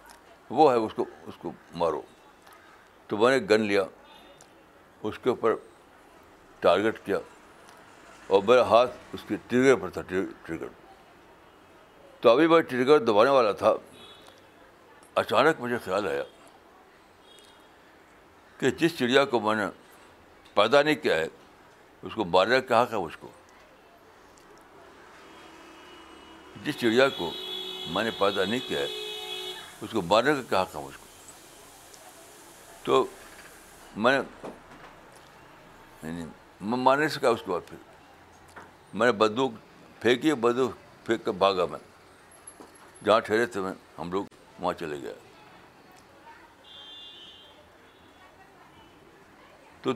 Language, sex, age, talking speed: Urdu, male, 60-79, 115 wpm